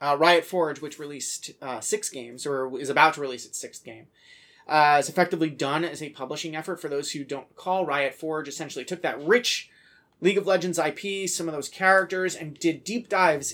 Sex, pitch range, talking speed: male, 145-180 Hz, 210 wpm